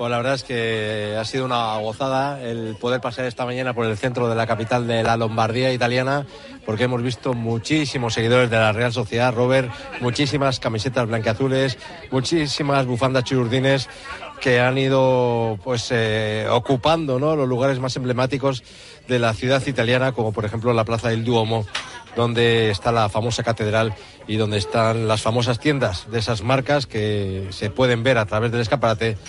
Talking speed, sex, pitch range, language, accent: 170 wpm, male, 115-135 Hz, Spanish, Spanish